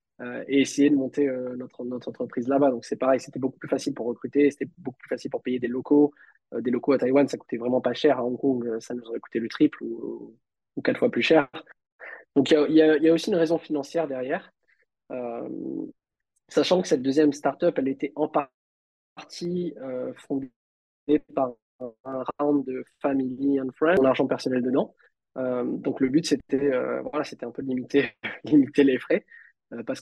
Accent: French